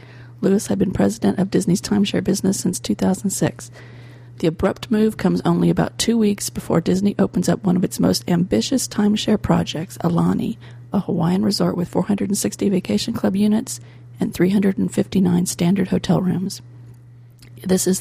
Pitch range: 125-200 Hz